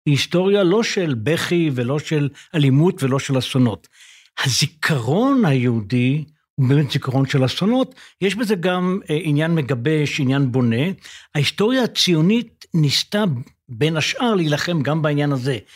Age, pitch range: 60-79, 140-185 Hz